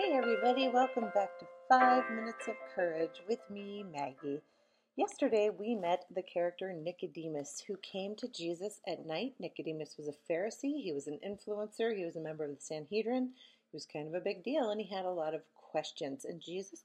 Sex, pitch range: female, 165-215 Hz